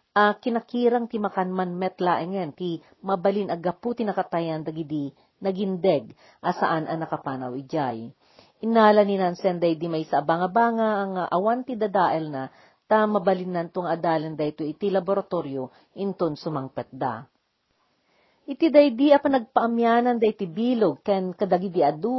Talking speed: 135 wpm